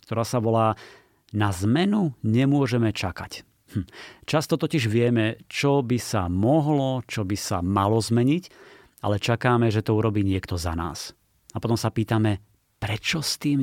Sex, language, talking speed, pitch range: male, Slovak, 155 wpm, 100-125 Hz